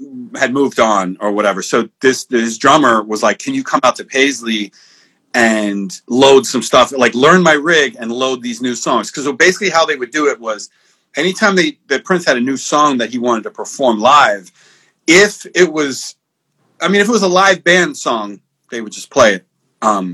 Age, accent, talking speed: 40-59, American, 210 wpm